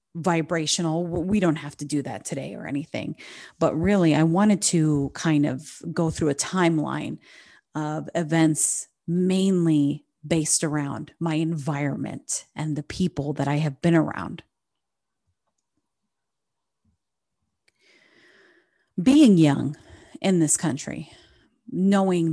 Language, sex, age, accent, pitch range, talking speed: English, female, 30-49, American, 145-165 Hz, 115 wpm